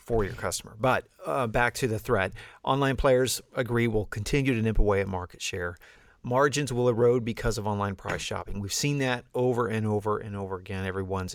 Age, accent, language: 40-59, American, English